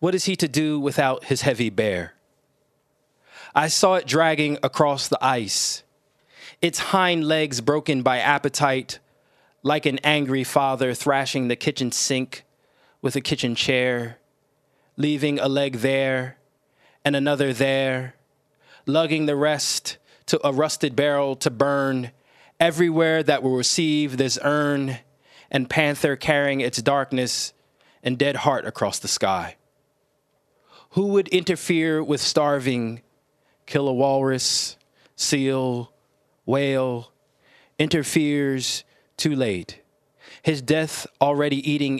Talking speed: 120 wpm